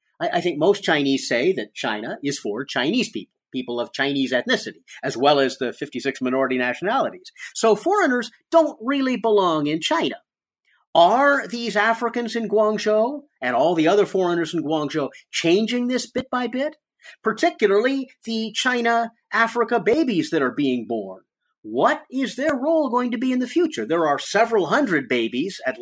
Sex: male